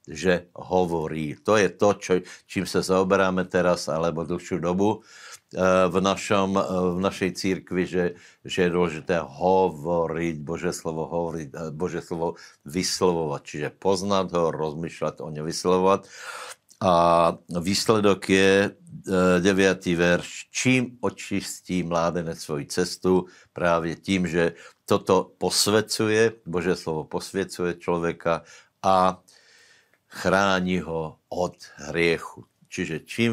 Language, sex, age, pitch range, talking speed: Slovak, male, 60-79, 85-95 Hz, 110 wpm